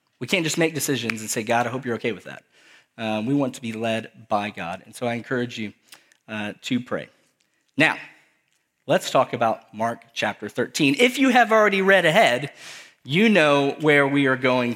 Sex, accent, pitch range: male, American, 125-175 Hz